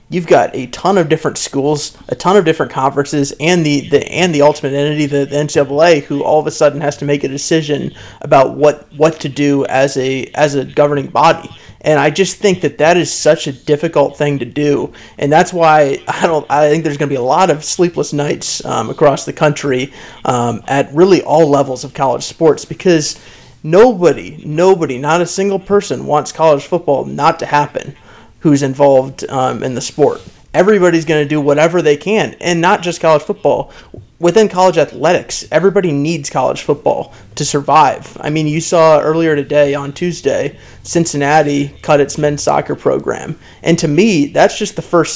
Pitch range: 145-170 Hz